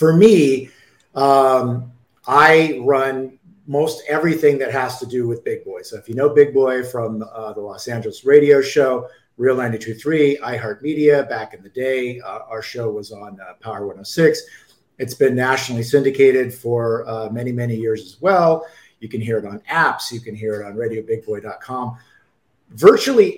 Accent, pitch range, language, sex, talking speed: American, 120-150 Hz, English, male, 170 wpm